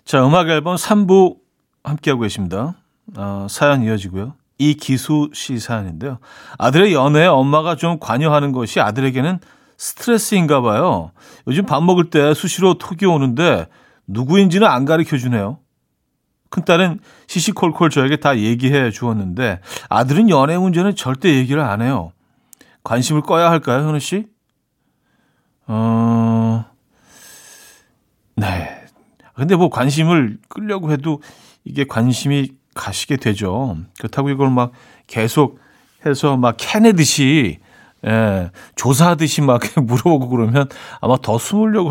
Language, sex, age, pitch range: Korean, male, 40-59, 120-165 Hz